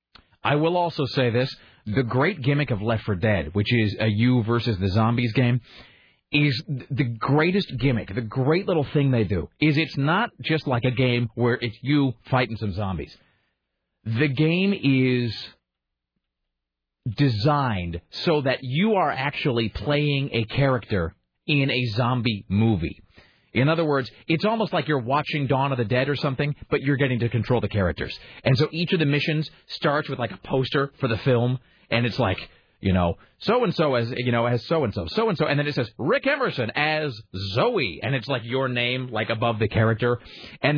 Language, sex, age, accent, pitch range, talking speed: English, male, 40-59, American, 110-145 Hz, 185 wpm